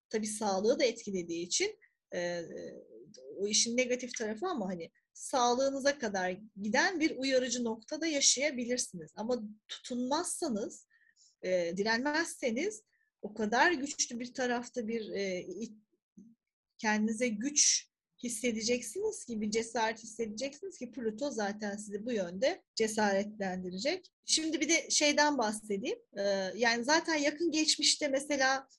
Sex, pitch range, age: female, 215-290 Hz, 40-59